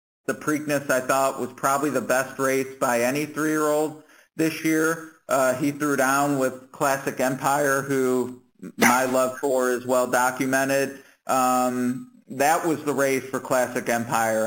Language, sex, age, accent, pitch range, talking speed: English, male, 50-69, American, 120-135 Hz, 140 wpm